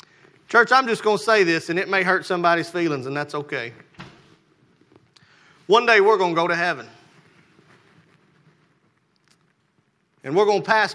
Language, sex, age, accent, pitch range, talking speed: English, male, 30-49, American, 140-180 Hz, 160 wpm